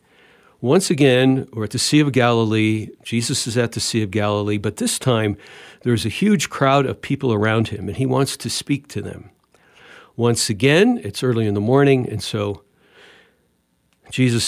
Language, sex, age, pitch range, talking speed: English, male, 60-79, 105-140 Hz, 180 wpm